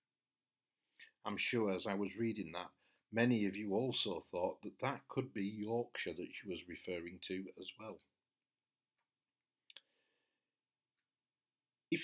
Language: English